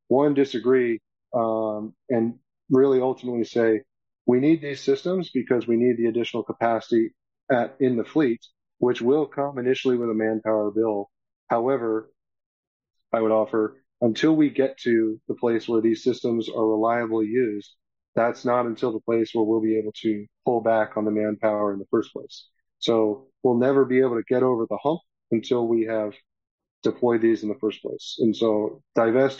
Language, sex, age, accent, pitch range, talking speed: English, male, 30-49, American, 110-130 Hz, 175 wpm